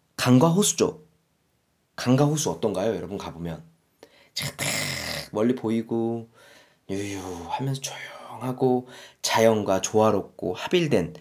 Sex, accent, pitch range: male, native, 110-155 Hz